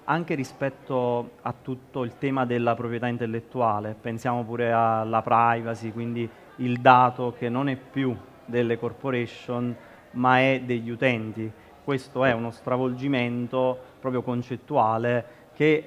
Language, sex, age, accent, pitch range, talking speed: Italian, male, 30-49, native, 115-130 Hz, 125 wpm